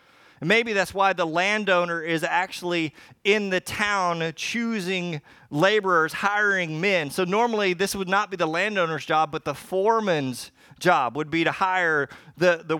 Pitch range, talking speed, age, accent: 145-185 Hz, 155 wpm, 30-49, American